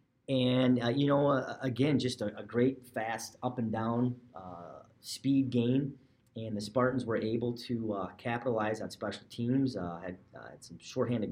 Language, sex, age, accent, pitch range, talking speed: English, male, 30-49, American, 100-120 Hz, 170 wpm